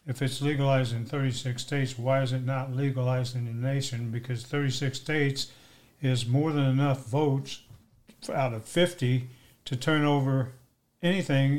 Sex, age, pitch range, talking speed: male, 60-79, 130-155 Hz, 150 wpm